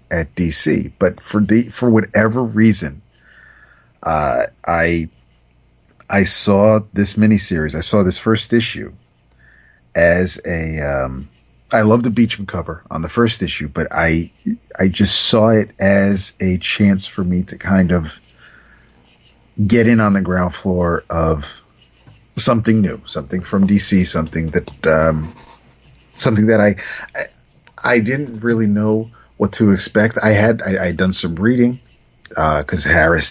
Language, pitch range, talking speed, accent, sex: English, 80-110 Hz, 150 wpm, American, male